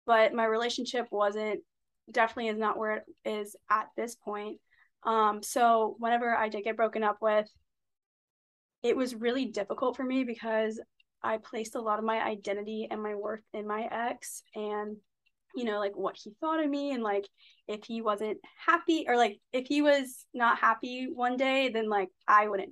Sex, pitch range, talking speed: female, 210-240 Hz, 185 wpm